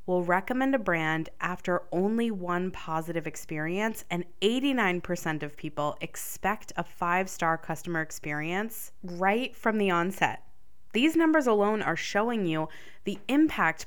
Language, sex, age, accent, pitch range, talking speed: English, female, 20-39, American, 170-230 Hz, 130 wpm